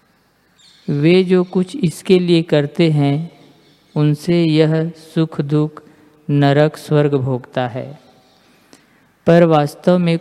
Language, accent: Hindi, native